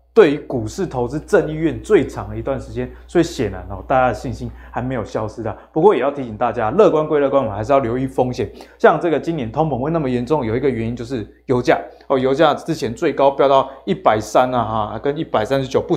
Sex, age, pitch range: male, 20-39, 120-155 Hz